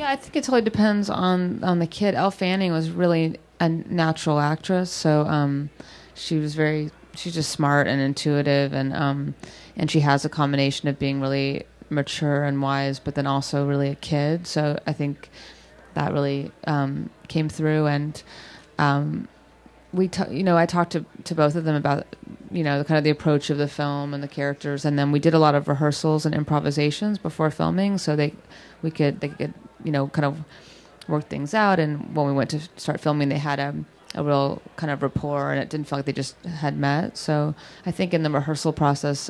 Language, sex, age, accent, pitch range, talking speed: English, female, 30-49, American, 145-165 Hz, 210 wpm